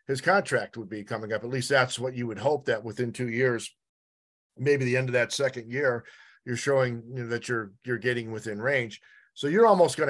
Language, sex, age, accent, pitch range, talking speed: English, male, 50-69, American, 120-145 Hz, 215 wpm